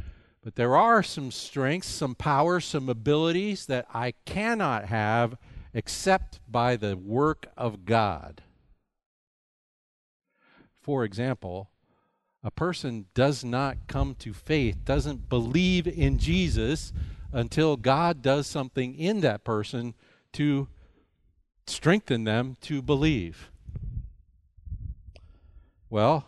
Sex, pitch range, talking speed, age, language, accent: male, 105-145 Hz, 105 wpm, 50-69, English, American